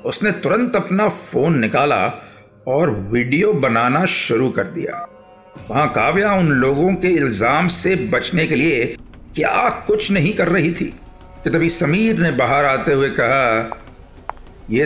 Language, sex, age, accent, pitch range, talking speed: Hindi, male, 50-69, native, 125-170 Hz, 145 wpm